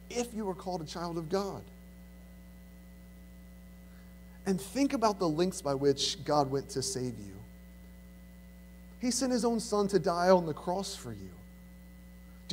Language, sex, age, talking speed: English, male, 30-49, 160 wpm